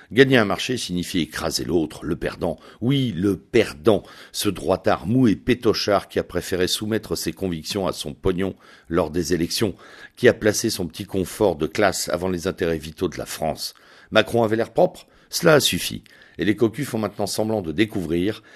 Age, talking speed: 60-79, 190 wpm